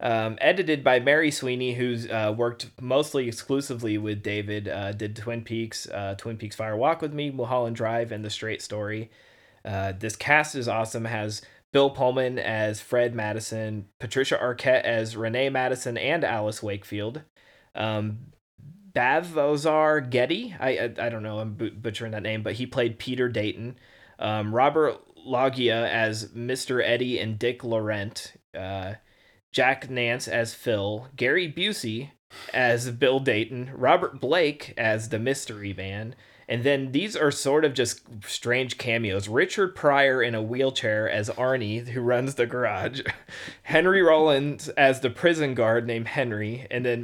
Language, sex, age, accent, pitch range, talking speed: English, male, 30-49, American, 110-130 Hz, 155 wpm